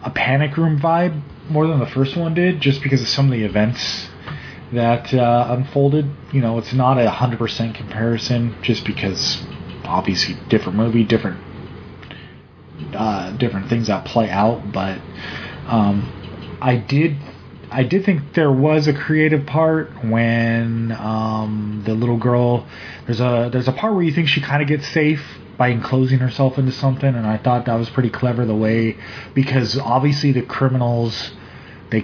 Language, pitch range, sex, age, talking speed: English, 110-140 Hz, male, 20-39, 165 wpm